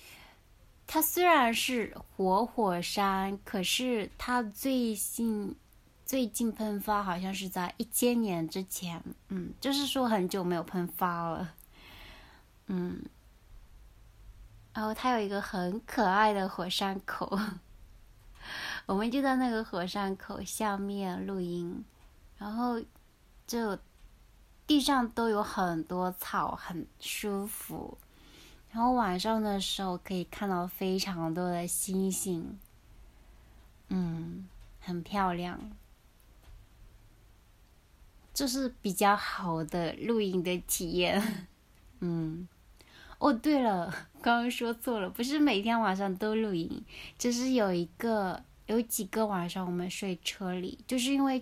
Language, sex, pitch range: Chinese, female, 175-230 Hz